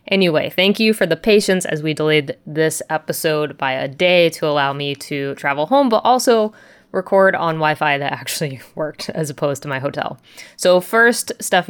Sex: female